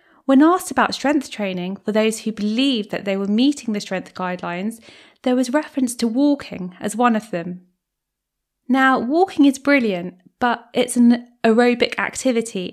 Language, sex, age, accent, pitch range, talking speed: English, female, 20-39, British, 205-275 Hz, 160 wpm